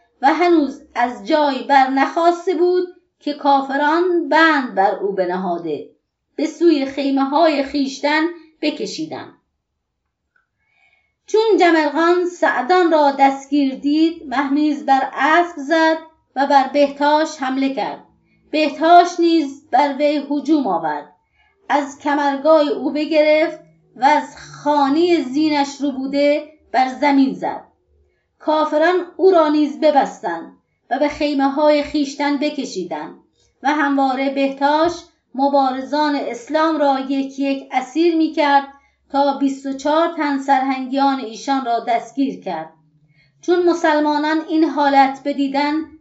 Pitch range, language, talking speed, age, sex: 270-310 Hz, Persian, 115 wpm, 30-49, female